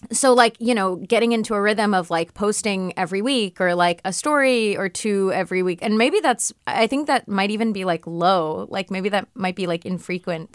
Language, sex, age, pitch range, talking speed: English, female, 20-39, 170-225 Hz, 220 wpm